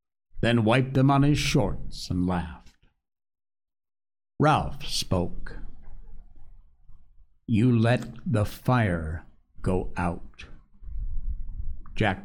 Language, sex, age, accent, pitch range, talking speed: English, male, 60-79, American, 90-140 Hz, 85 wpm